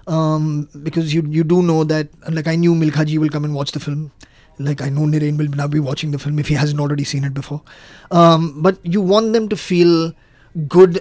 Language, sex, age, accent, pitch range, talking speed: Hindi, male, 20-39, native, 150-165 Hz, 240 wpm